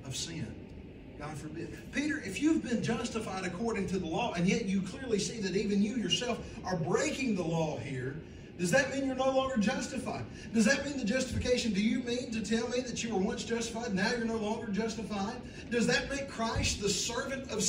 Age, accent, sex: 40-59, American, male